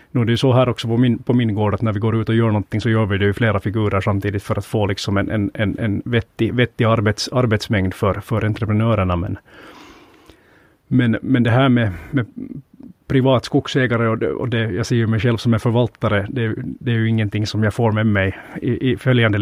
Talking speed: 230 wpm